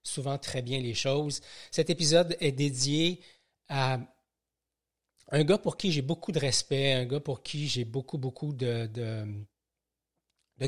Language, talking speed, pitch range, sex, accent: French, 150 wpm, 125-160 Hz, male, Canadian